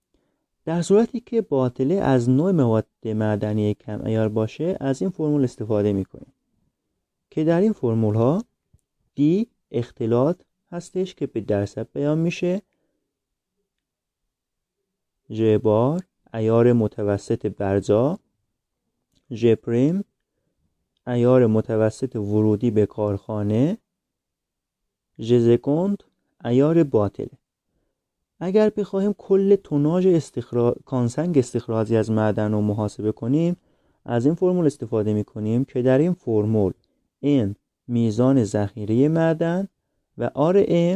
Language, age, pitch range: Persian, 30-49, 110-155 Hz